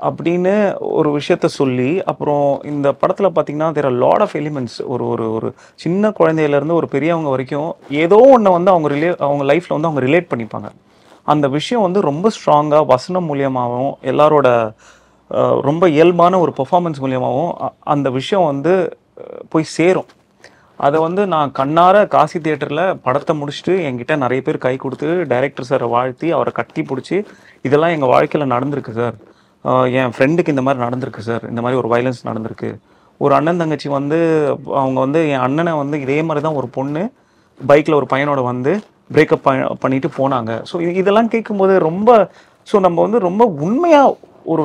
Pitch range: 135-175 Hz